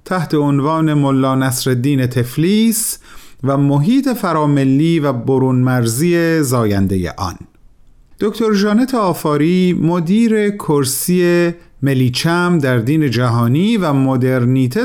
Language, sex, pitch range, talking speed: Persian, male, 120-185 Hz, 95 wpm